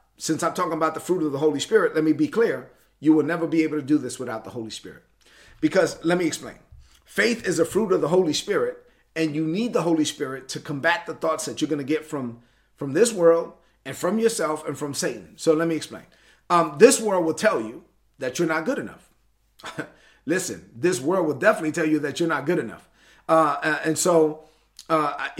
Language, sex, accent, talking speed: English, male, American, 220 wpm